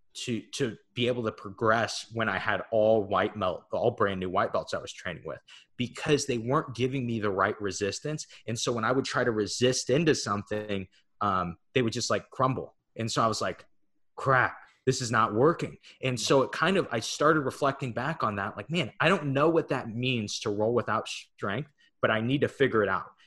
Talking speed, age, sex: 220 wpm, 20-39, male